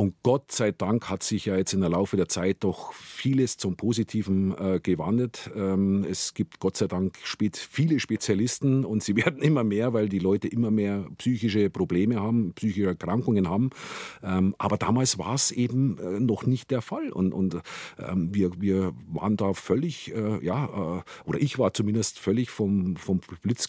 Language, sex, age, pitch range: German, male, 50-69, 95-125 Hz